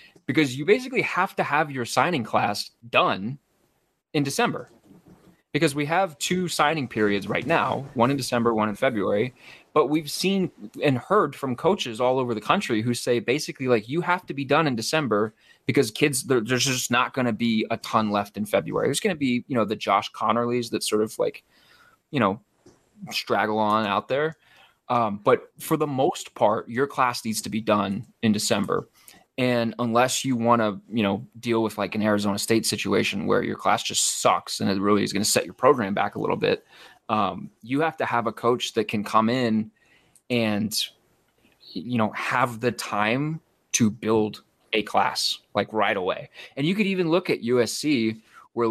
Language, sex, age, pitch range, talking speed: English, male, 20-39, 110-140 Hz, 195 wpm